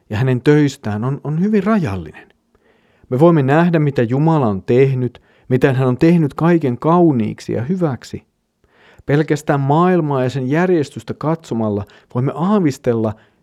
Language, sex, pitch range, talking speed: Finnish, male, 115-165 Hz, 135 wpm